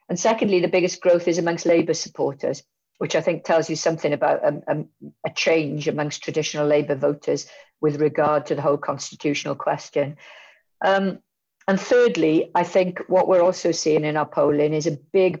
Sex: female